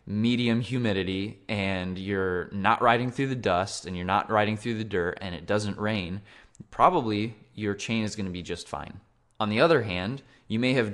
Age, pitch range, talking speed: 20-39, 100-120 Hz, 190 wpm